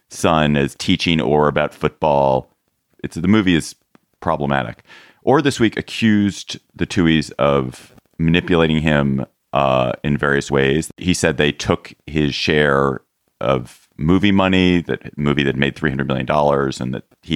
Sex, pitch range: male, 70-80 Hz